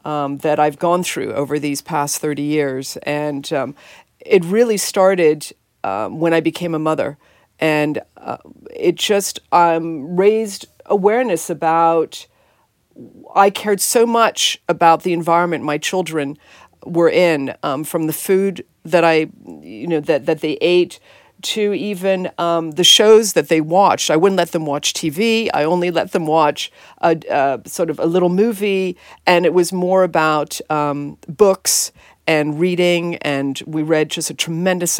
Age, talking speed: 50-69, 160 wpm